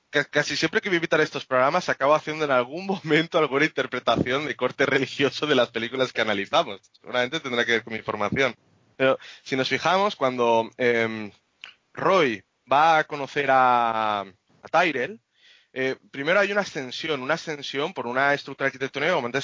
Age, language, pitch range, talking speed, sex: 20-39, Spanish, 120-155 Hz, 175 wpm, male